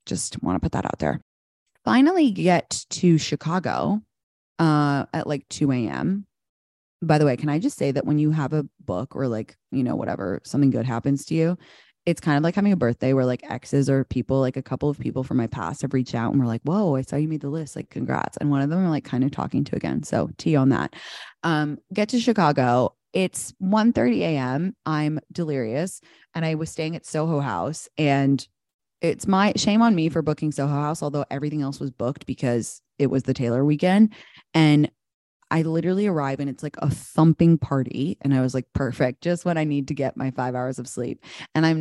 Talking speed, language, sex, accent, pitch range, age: 220 wpm, English, female, American, 135-170 Hz, 20-39